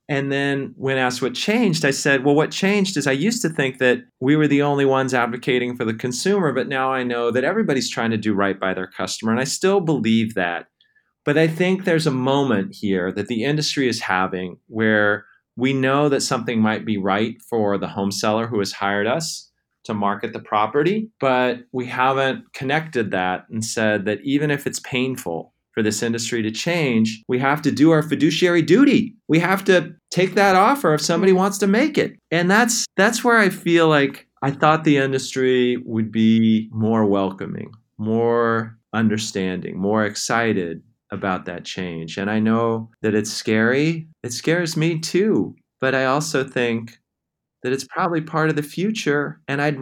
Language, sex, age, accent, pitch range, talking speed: English, male, 30-49, American, 110-155 Hz, 190 wpm